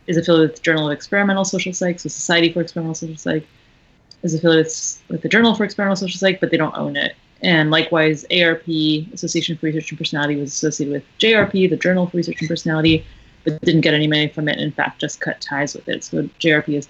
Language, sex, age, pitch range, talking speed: English, female, 30-49, 150-170 Hz, 230 wpm